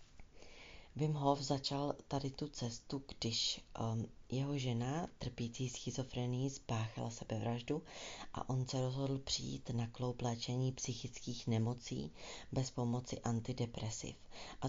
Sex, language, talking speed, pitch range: female, Czech, 105 wpm, 115-135 Hz